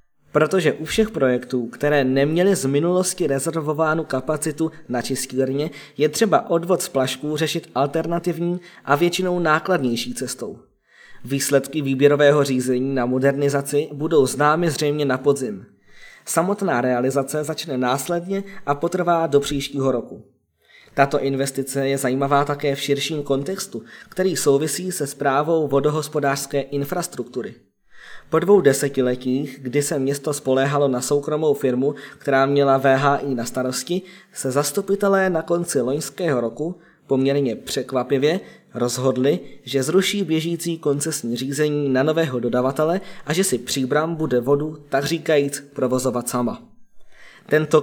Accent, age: native, 20-39